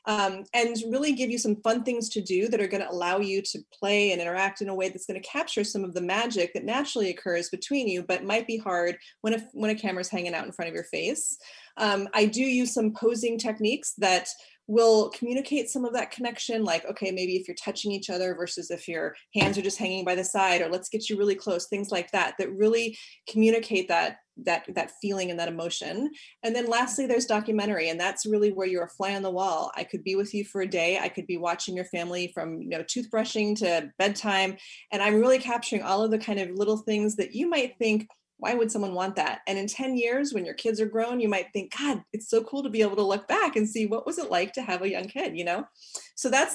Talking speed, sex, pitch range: 250 wpm, female, 185-225 Hz